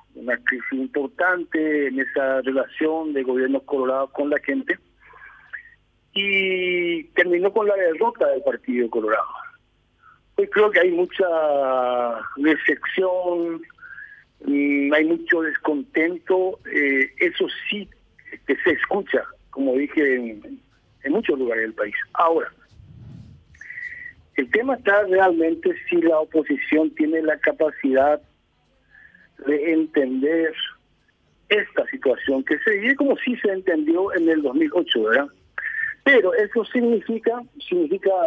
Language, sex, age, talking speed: Spanish, male, 50-69, 120 wpm